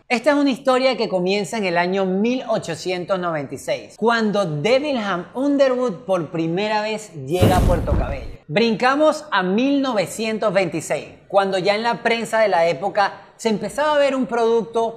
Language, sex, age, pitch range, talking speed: Spanish, male, 30-49, 180-245 Hz, 150 wpm